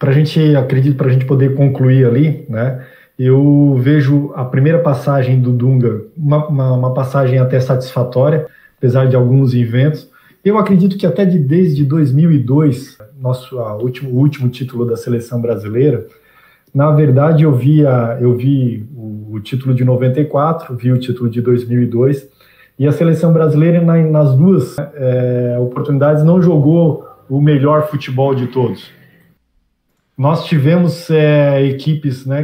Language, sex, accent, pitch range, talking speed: Portuguese, male, Brazilian, 125-150 Hz, 140 wpm